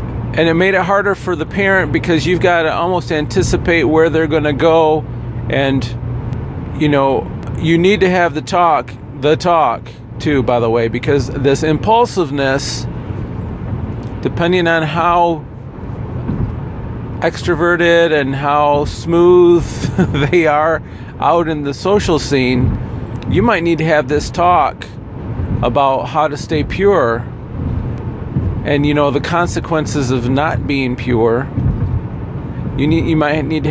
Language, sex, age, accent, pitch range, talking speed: English, male, 40-59, American, 125-165 Hz, 135 wpm